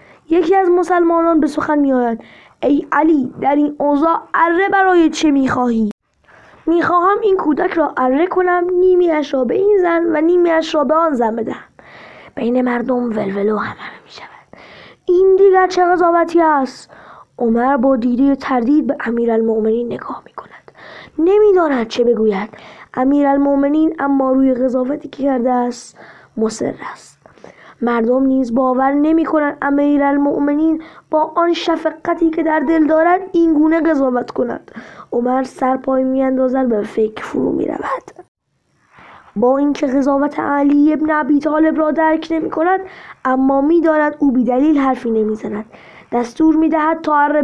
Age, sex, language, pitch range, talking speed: 20-39, female, Persian, 255-320 Hz, 150 wpm